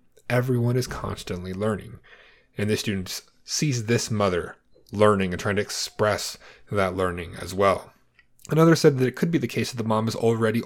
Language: English